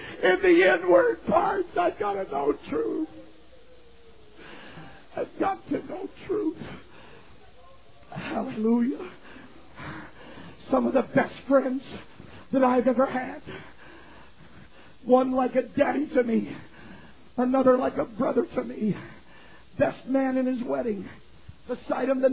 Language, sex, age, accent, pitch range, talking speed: English, male, 50-69, American, 250-290 Hz, 120 wpm